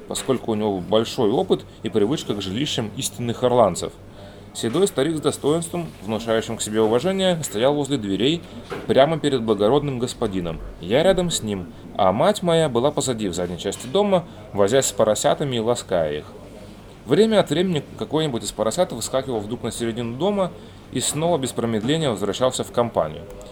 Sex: male